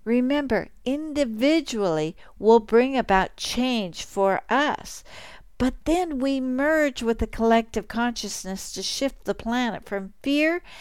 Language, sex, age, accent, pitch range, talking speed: English, female, 60-79, American, 185-240 Hz, 120 wpm